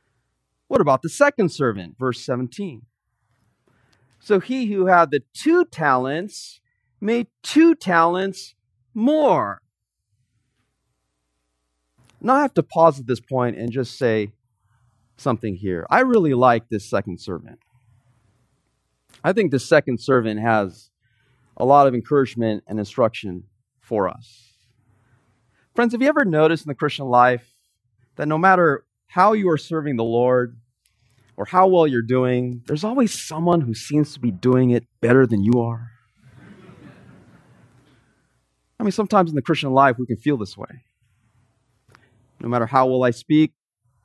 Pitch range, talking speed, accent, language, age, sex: 115-145 Hz, 145 wpm, American, English, 30-49, male